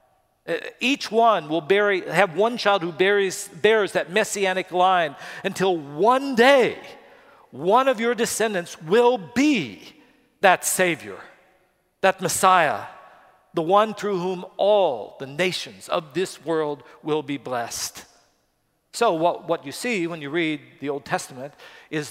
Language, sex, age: English, male, 50-69